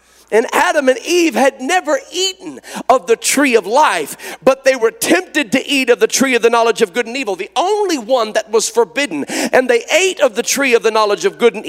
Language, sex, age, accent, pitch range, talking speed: English, male, 50-69, American, 230-300 Hz, 235 wpm